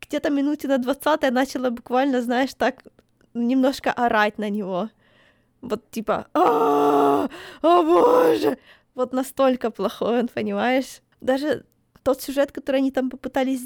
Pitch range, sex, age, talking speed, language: 225-265 Hz, female, 20-39, 125 wpm, Ukrainian